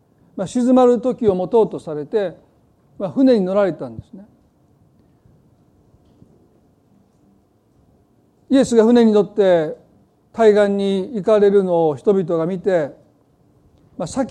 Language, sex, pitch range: Japanese, male, 185-225 Hz